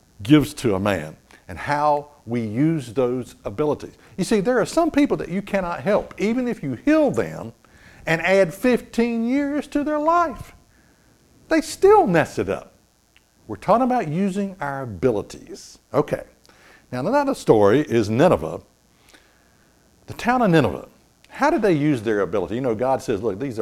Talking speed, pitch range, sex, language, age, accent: 165 wpm, 115-185 Hz, male, English, 60-79, American